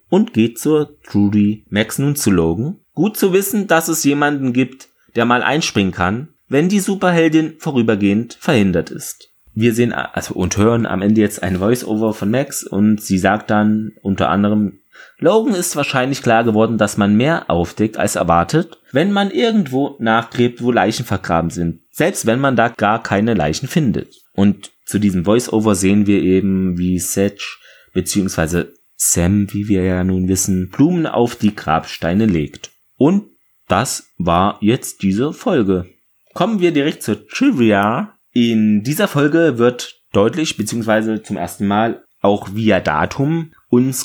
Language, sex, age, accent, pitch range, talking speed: German, male, 30-49, German, 100-140 Hz, 155 wpm